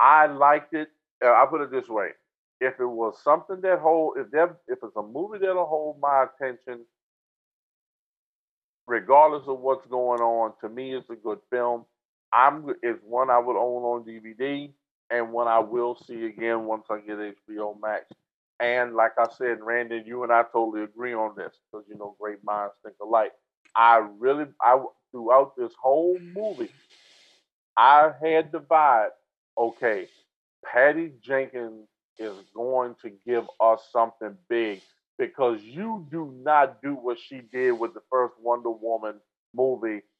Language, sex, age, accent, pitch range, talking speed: English, male, 50-69, American, 115-145 Hz, 165 wpm